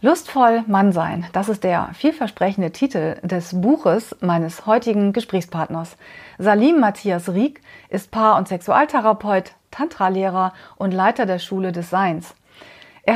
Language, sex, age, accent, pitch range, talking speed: German, female, 30-49, German, 185-250 Hz, 130 wpm